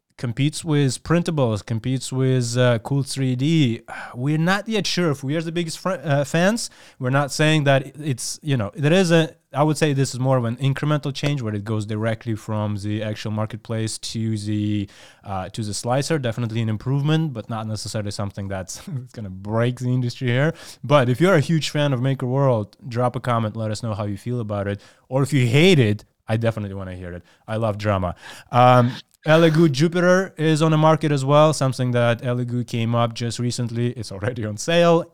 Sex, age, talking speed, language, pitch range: male, 20-39, 210 wpm, English, 110-140 Hz